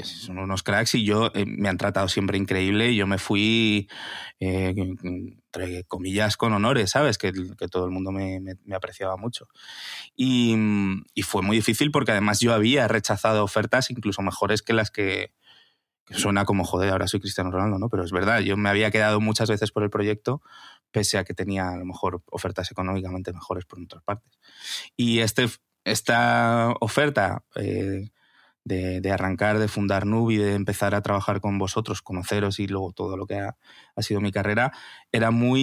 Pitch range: 95-110 Hz